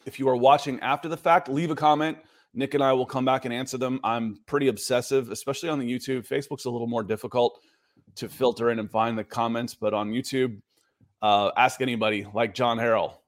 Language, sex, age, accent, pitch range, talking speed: English, male, 30-49, American, 115-140 Hz, 210 wpm